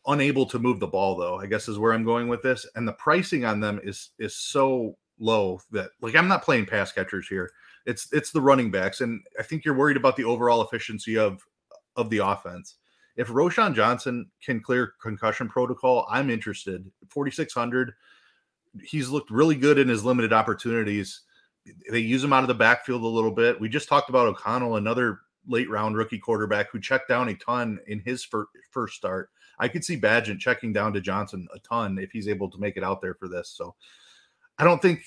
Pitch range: 105-130 Hz